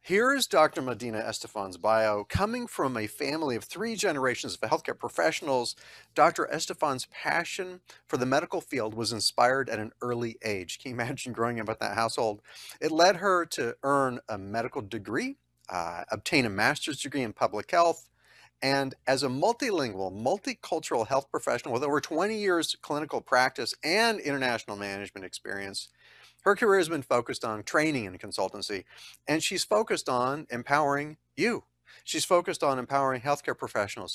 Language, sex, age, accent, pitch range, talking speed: English, male, 40-59, American, 110-160 Hz, 160 wpm